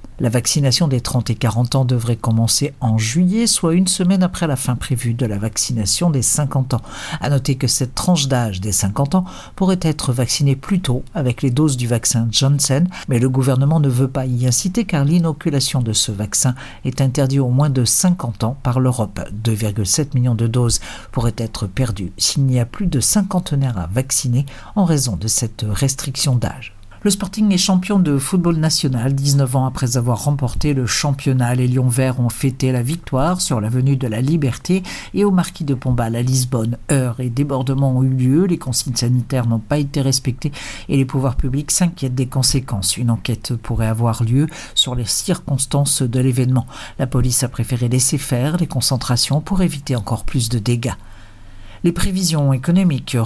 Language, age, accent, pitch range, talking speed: Portuguese, 60-79, French, 120-145 Hz, 190 wpm